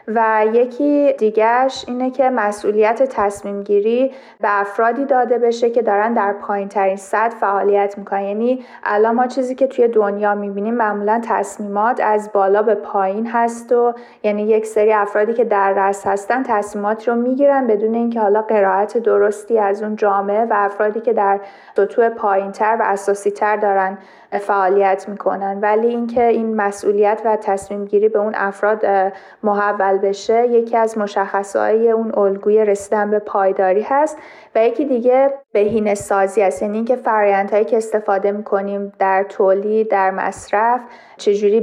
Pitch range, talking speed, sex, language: 200-230 Hz, 155 wpm, female, Persian